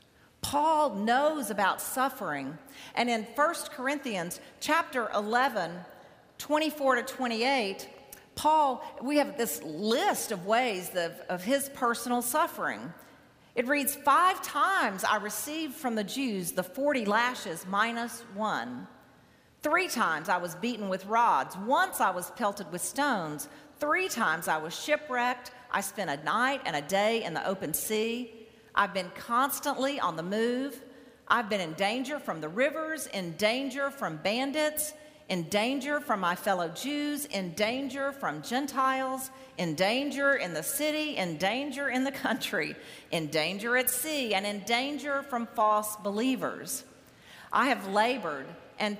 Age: 40-59